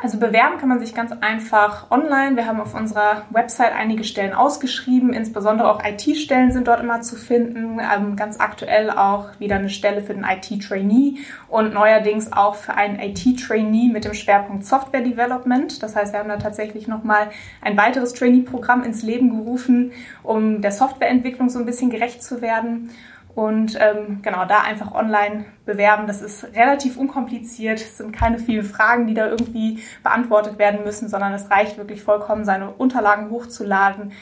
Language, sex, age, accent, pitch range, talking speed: German, female, 20-39, German, 210-240 Hz, 170 wpm